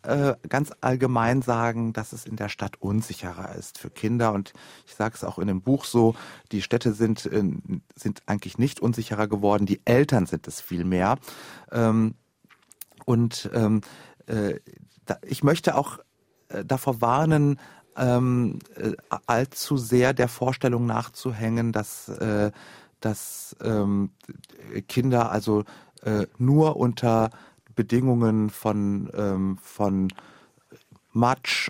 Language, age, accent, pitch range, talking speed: German, 40-59, German, 105-135 Hz, 105 wpm